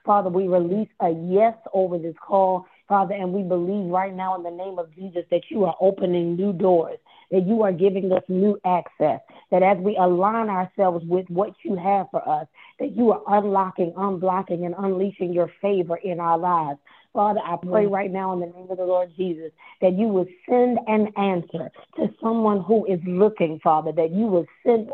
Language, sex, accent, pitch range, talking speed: English, female, American, 180-205 Hz, 200 wpm